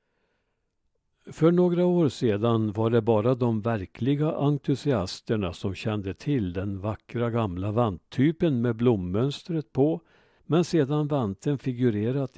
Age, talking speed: 60-79, 115 wpm